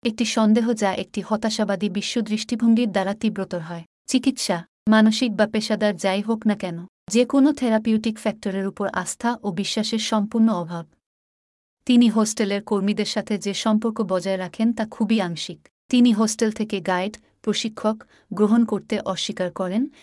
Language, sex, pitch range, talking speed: Bengali, female, 195-230 Hz, 145 wpm